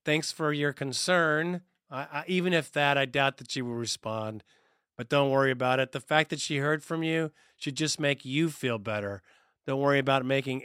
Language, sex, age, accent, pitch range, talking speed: English, male, 40-59, American, 130-155 Hz, 210 wpm